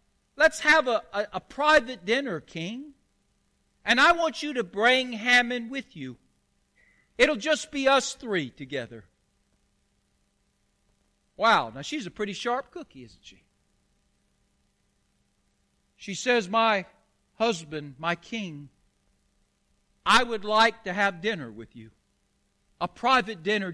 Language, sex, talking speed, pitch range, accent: English, male, 125 wpm, 165-265 Hz, American